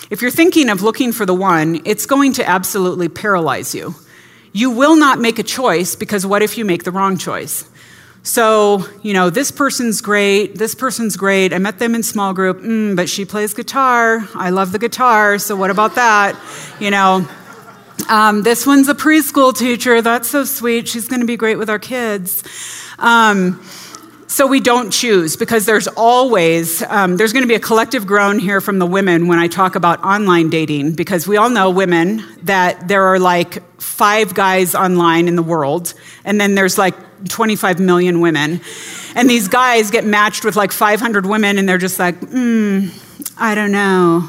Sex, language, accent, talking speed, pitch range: female, English, American, 185 wpm, 185-230 Hz